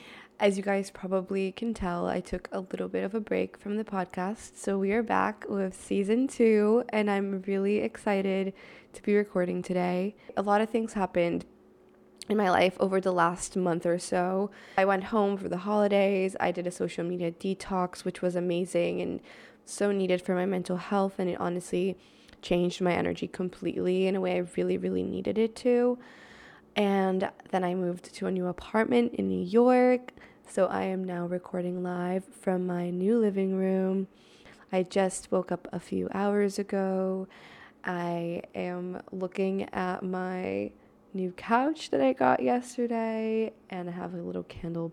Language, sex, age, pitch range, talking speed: English, female, 20-39, 180-205 Hz, 175 wpm